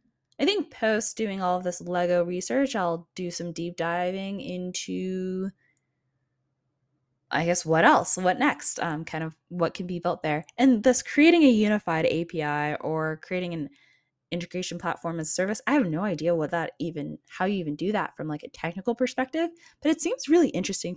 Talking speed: 185 wpm